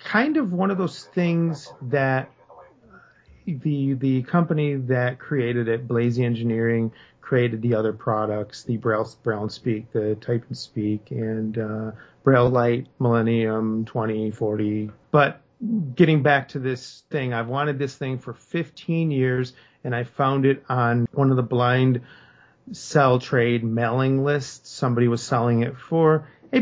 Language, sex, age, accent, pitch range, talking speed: English, male, 40-59, American, 115-145 Hz, 150 wpm